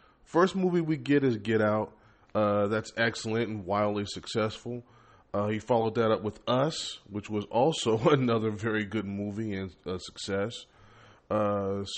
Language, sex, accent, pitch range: English, male, American, 105-125 Hz